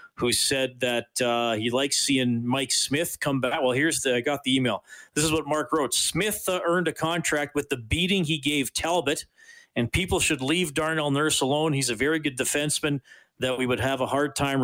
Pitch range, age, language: 125-150 Hz, 40-59, English